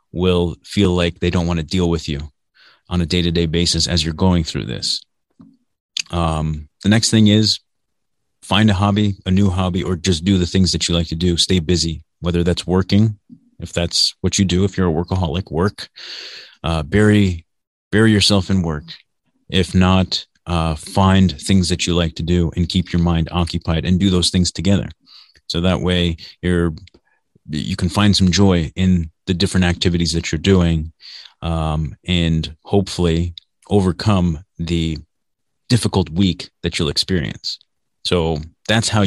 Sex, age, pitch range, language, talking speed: male, 30-49, 85-95 Hz, English, 170 wpm